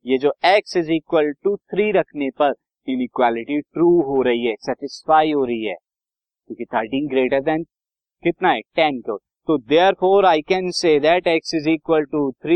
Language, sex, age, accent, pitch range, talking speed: Hindi, male, 50-69, native, 135-180 Hz, 95 wpm